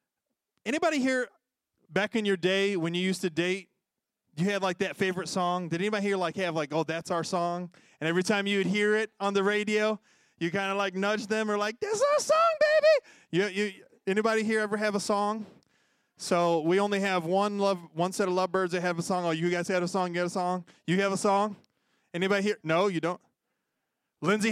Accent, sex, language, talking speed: American, male, English, 225 wpm